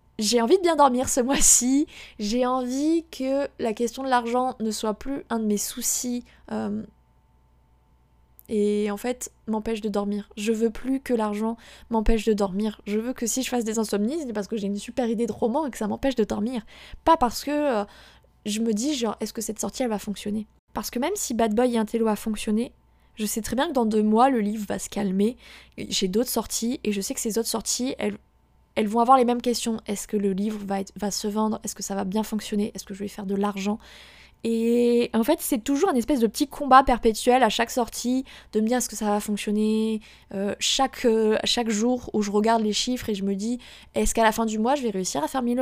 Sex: female